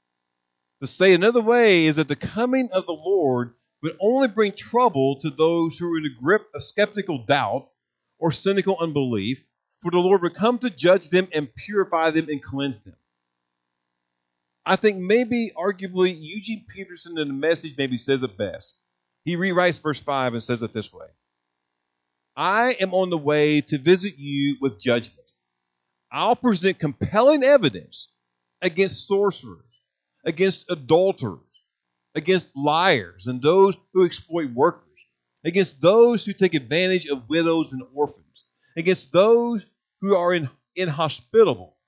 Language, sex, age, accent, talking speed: English, male, 50-69, American, 150 wpm